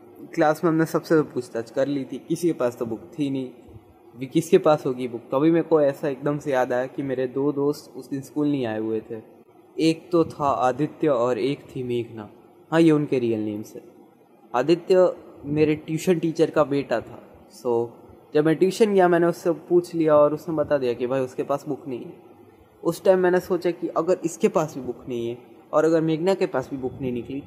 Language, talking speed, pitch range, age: Hindi, 225 wpm, 120-150 Hz, 20-39